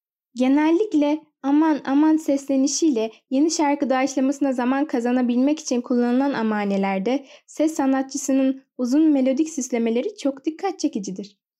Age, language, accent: 10-29, Turkish, native